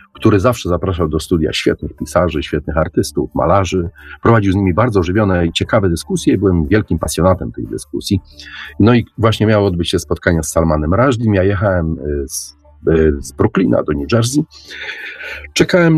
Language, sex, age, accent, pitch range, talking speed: Polish, male, 40-59, native, 80-115 Hz, 160 wpm